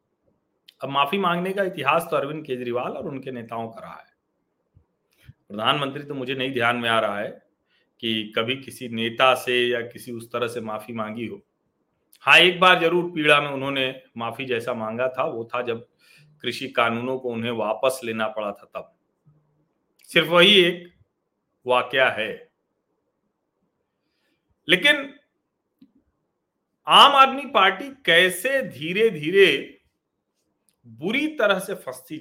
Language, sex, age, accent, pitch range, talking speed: Hindi, male, 40-59, native, 115-175 Hz, 140 wpm